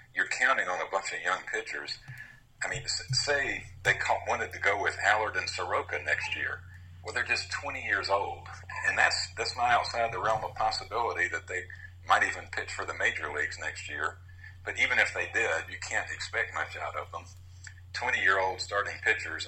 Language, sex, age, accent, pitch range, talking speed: English, male, 50-69, American, 90-95 Hz, 190 wpm